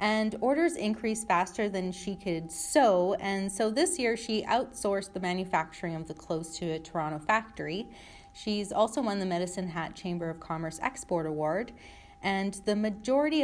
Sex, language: female, English